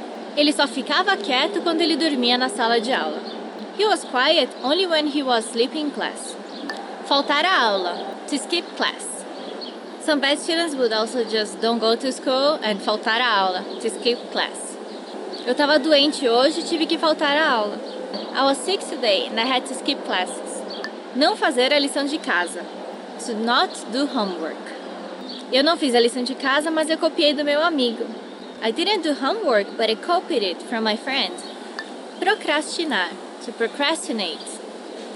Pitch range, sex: 230-305 Hz, female